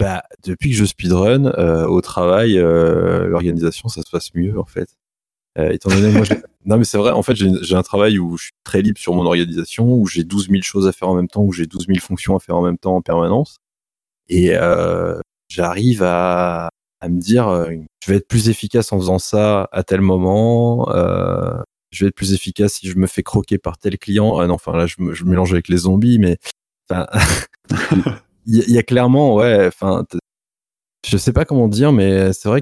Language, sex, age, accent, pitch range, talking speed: French, male, 20-39, French, 90-110 Hz, 220 wpm